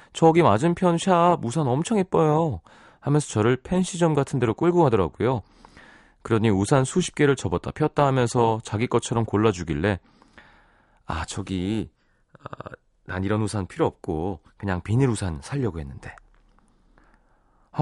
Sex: male